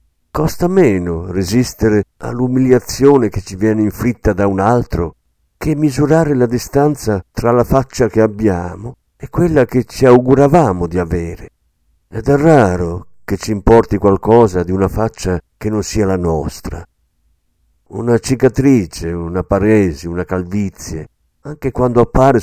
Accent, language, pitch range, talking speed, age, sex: native, Italian, 90-125 Hz, 135 wpm, 50-69, male